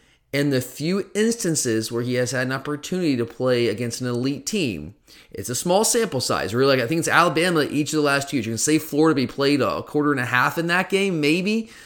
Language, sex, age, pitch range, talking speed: English, male, 30-49, 120-150 Hz, 245 wpm